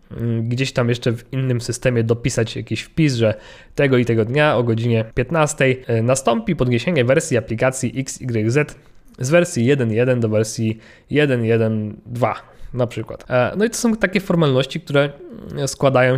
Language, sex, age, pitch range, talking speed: Polish, male, 20-39, 120-140 Hz, 140 wpm